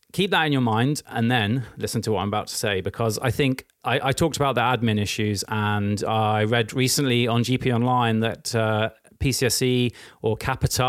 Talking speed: 200 wpm